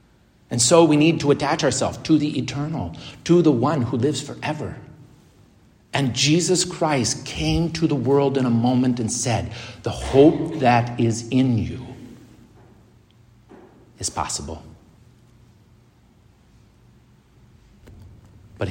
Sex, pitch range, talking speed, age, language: male, 110-140 Hz, 120 wpm, 50-69, English